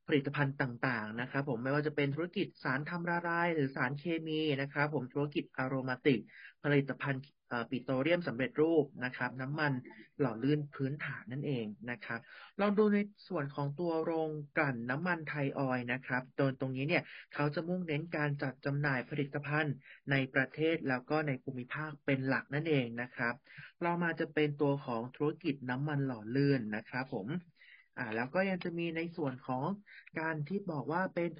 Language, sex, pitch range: Thai, male, 130-160 Hz